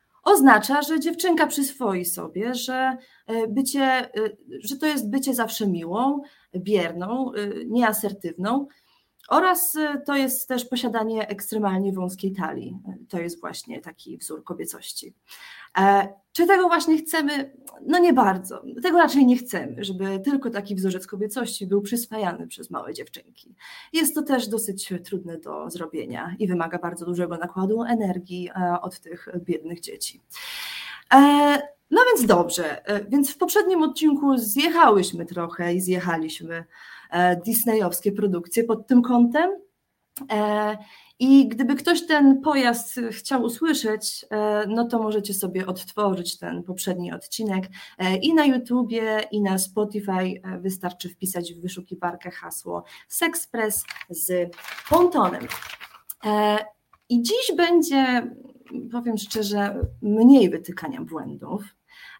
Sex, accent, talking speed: female, native, 115 wpm